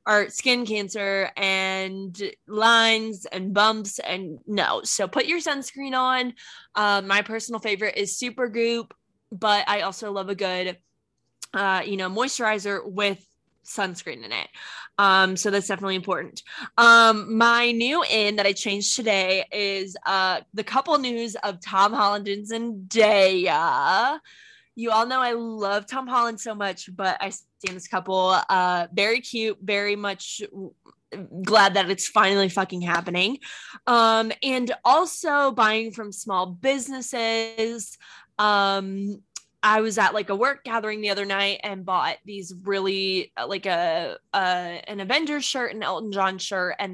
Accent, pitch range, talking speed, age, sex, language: American, 195-230 Hz, 150 wpm, 20-39, female, English